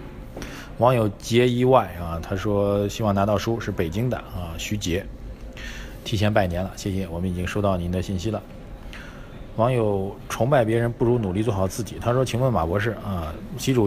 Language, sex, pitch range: Chinese, male, 95-115 Hz